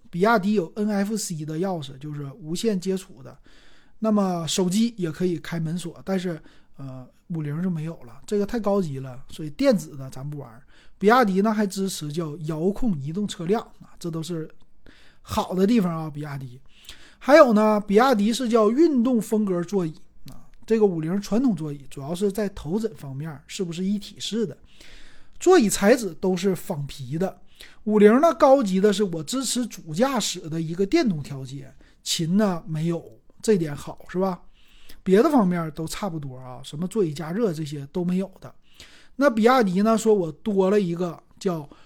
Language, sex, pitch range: Chinese, male, 160-215 Hz